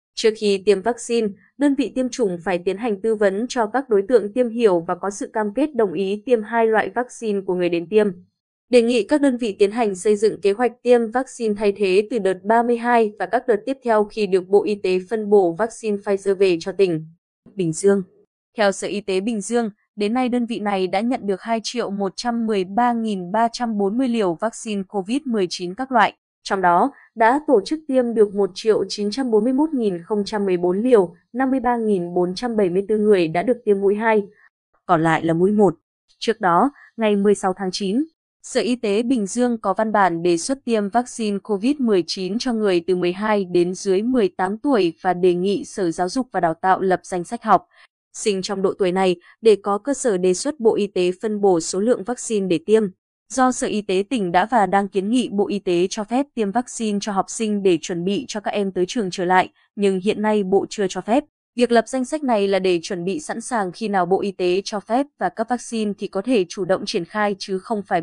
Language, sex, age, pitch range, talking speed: Vietnamese, female, 20-39, 190-235 Hz, 215 wpm